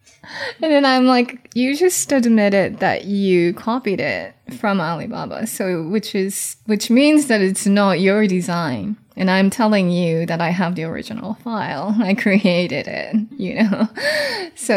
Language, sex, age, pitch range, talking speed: English, female, 20-39, 180-220 Hz, 160 wpm